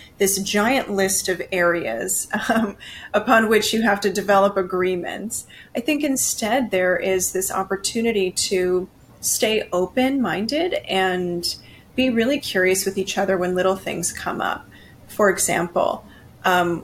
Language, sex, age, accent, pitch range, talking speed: English, female, 30-49, American, 180-235 Hz, 135 wpm